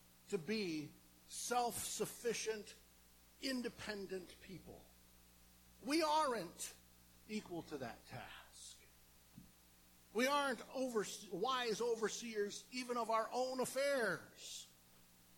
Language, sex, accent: English, male, American